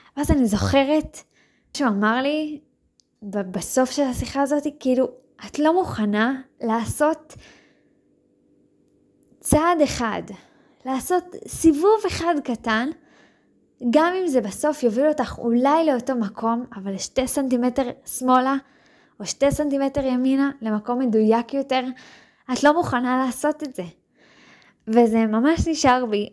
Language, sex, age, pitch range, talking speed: Hebrew, female, 20-39, 215-275 Hz, 115 wpm